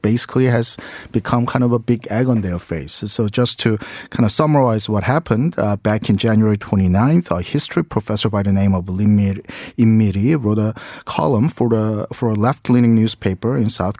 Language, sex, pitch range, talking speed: English, male, 105-125 Hz, 195 wpm